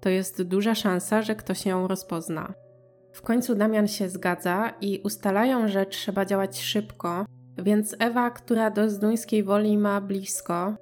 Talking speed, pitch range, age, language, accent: 150 wpm, 180-210 Hz, 20-39, Polish, native